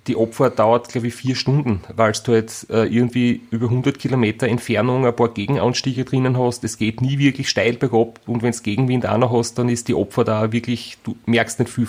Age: 30-49